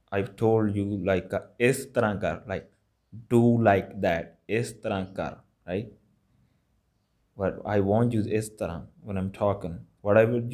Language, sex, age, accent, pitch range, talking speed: English, male, 20-39, Indian, 95-115 Hz, 130 wpm